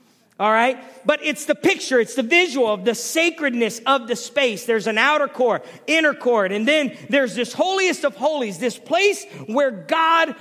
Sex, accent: male, American